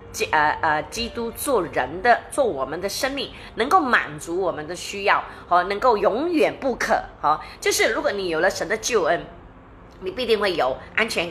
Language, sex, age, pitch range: Chinese, female, 20-39, 170-285 Hz